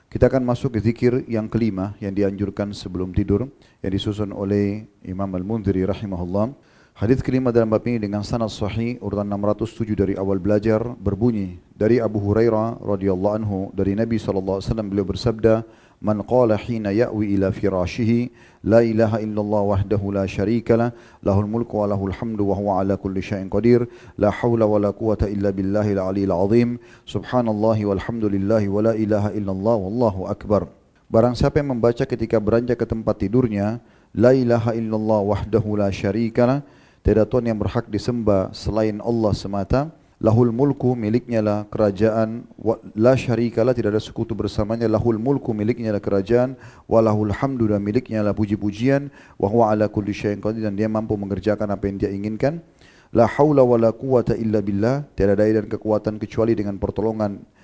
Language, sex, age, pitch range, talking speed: Indonesian, male, 40-59, 100-120 Hz, 150 wpm